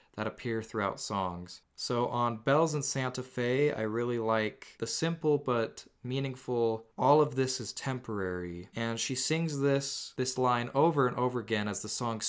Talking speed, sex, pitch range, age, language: 170 wpm, male, 110-135 Hz, 20-39, English